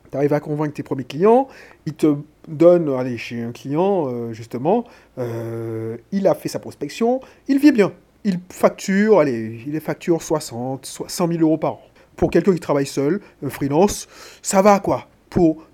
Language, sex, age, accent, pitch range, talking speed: French, male, 30-49, French, 140-195 Hz, 185 wpm